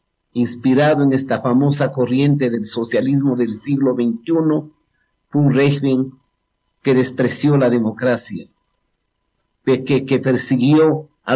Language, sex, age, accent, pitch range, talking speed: Spanish, male, 50-69, Mexican, 125-165 Hz, 110 wpm